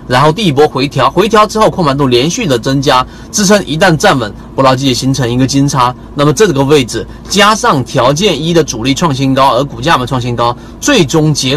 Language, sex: Chinese, male